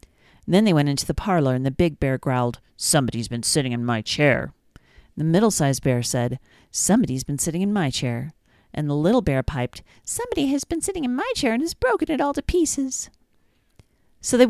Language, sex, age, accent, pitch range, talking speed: English, female, 40-59, American, 135-195 Hz, 200 wpm